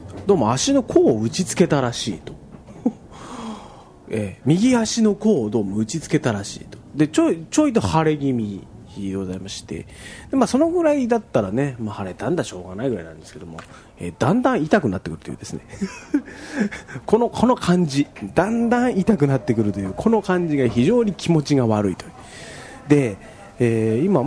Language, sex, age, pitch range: Japanese, male, 40-59, 100-165 Hz